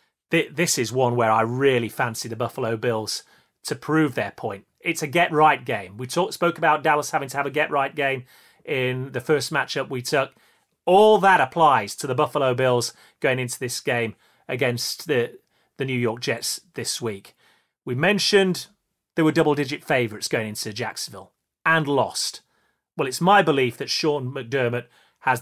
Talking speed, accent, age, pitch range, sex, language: 170 wpm, British, 30-49, 125-160 Hz, male, English